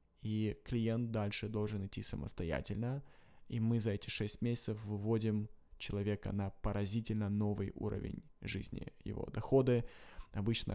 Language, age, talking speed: Russian, 20-39, 125 wpm